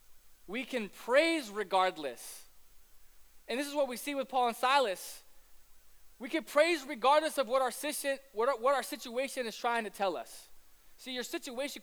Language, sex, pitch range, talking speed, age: English, male, 195-270 Hz, 160 wpm, 20-39